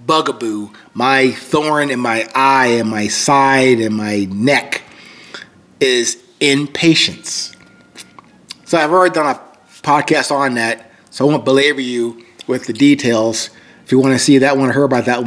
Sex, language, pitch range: male, English, 120-150 Hz